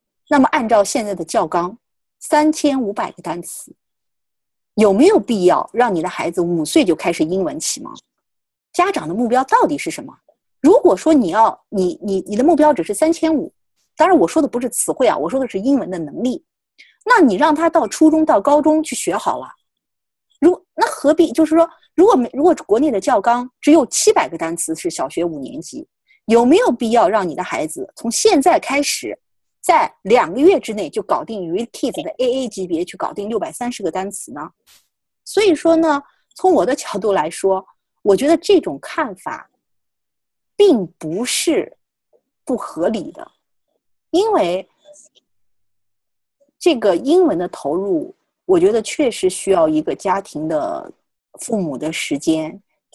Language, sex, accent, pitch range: Chinese, female, native, 205-325 Hz